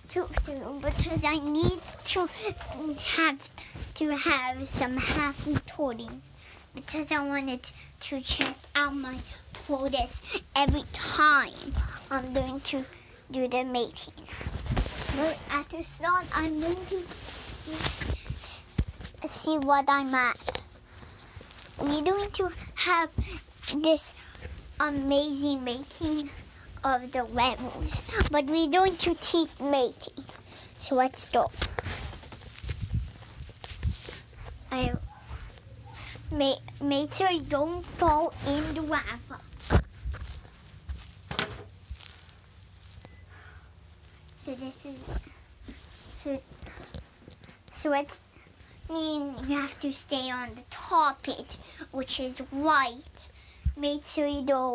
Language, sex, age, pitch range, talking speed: English, male, 20-39, 255-310 Hz, 95 wpm